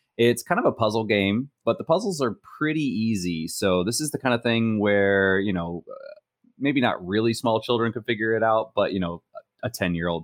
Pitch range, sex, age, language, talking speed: 90-115 Hz, male, 30-49, English, 210 wpm